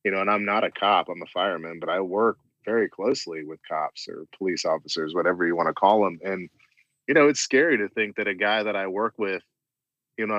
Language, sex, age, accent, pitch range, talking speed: English, male, 30-49, American, 100-130 Hz, 245 wpm